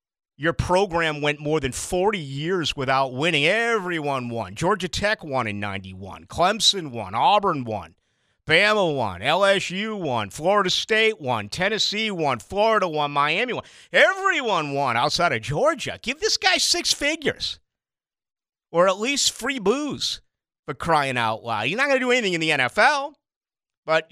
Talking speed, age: 155 wpm, 50-69